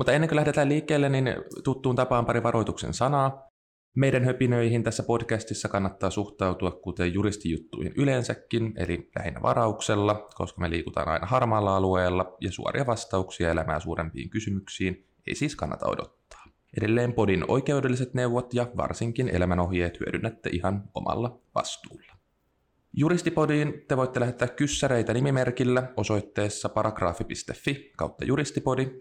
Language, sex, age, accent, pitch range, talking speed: Finnish, male, 20-39, native, 90-130 Hz, 125 wpm